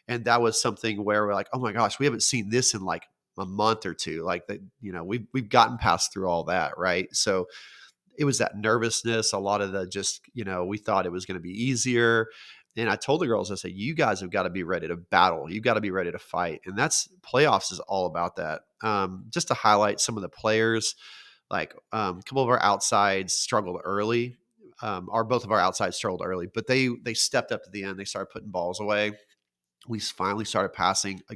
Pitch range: 100-120 Hz